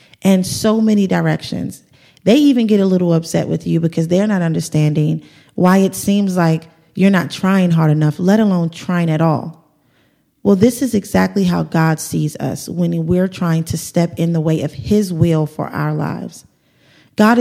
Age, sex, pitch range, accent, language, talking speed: 30-49, female, 165-205 Hz, American, English, 185 wpm